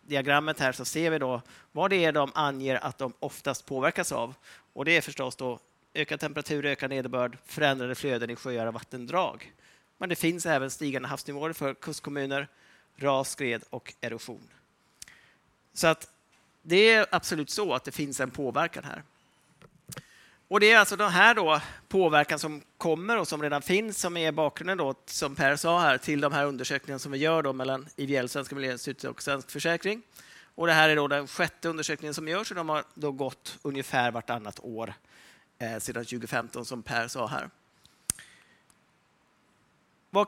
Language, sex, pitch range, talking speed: Swedish, male, 130-165 Hz, 175 wpm